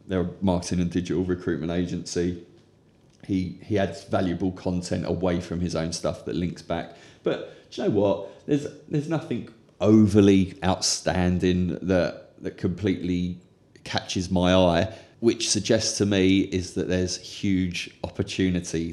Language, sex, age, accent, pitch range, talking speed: English, male, 30-49, British, 90-100 Hz, 145 wpm